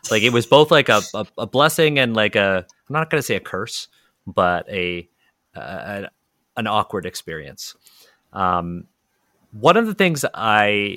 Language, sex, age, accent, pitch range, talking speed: English, male, 30-49, American, 90-120 Hz, 165 wpm